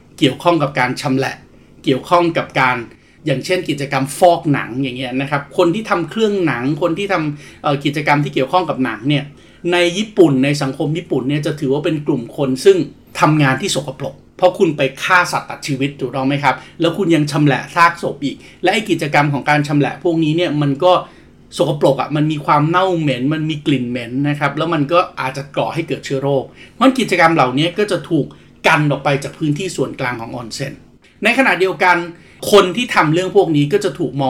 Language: Thai